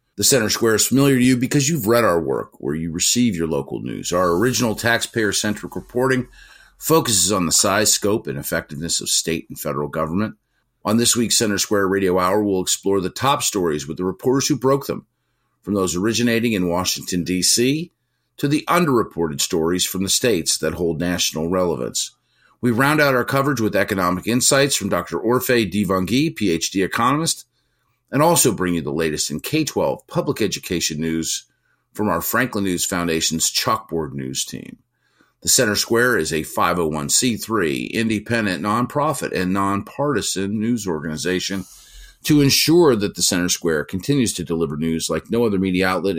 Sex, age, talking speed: male, 50-69, 170 wpm